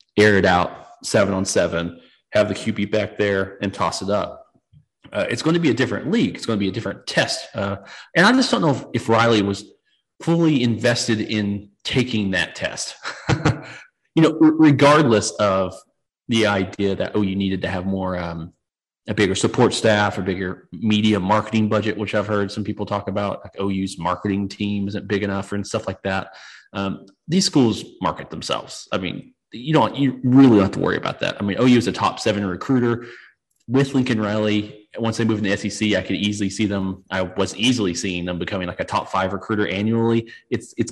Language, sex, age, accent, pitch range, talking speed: English, male, 30-49, American, 100-125 Hz, 205 wpm